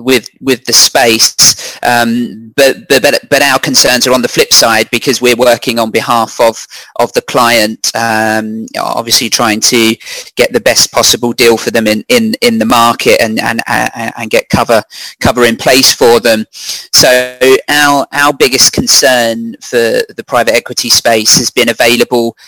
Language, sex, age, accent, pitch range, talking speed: English, male, 30-49, British, 115-130 Hz, 170 wpm